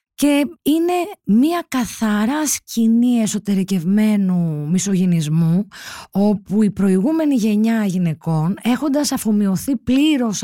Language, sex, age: Greek, female, 20-39